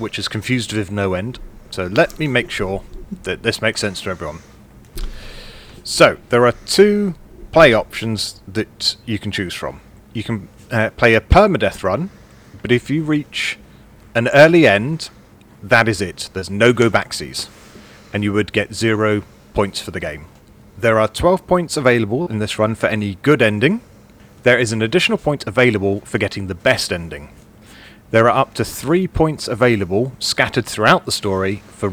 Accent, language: British, English